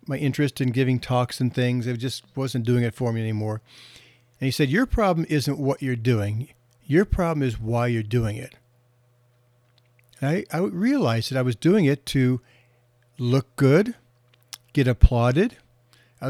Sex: male